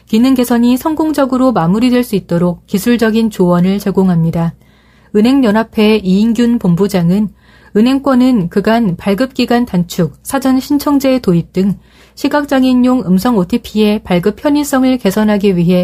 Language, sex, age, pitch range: Korean, female, 30-49, 185-250 Hz